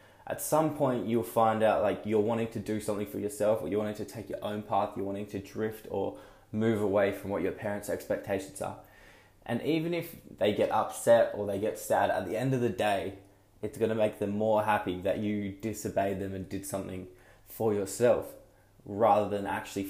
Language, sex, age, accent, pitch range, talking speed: English, male, 20-39, Australian, 95-110 Hz, 210 wpm